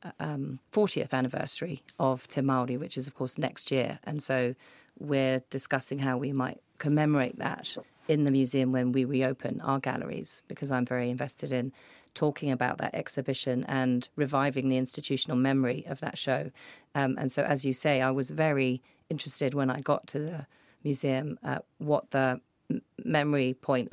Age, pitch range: 40-59, 130-145 Hz